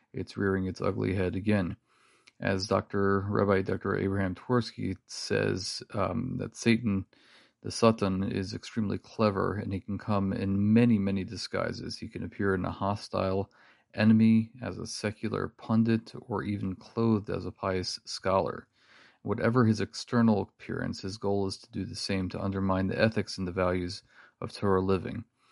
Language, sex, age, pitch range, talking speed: English, male, 40-59, 95-110 Hz, 160 wpm